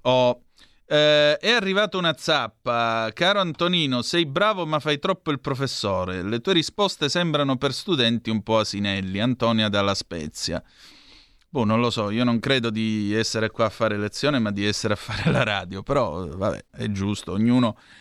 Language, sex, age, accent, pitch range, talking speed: Italian, male, 30-49, native, 110-150 Hz, 170 wpm